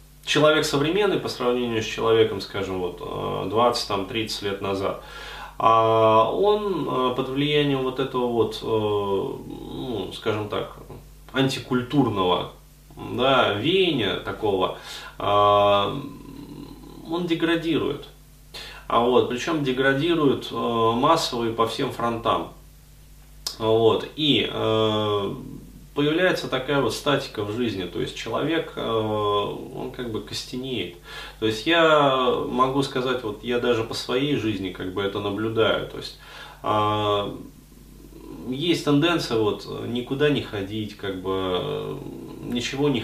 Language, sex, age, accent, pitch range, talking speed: Russian, male, 20-39, native, 105-140 Hz, 100 wpm